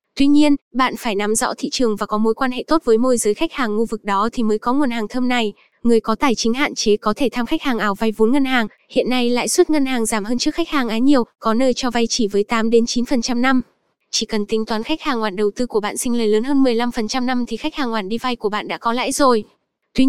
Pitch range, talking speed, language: 220-265 Hz, 285 wpm, Vietnamese